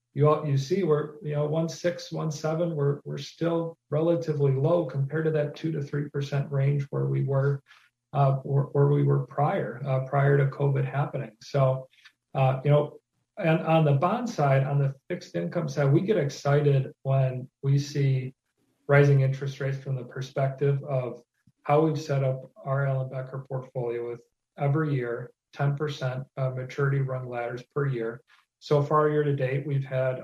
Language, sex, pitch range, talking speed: English, male, 130-145 Hz, 175 wpm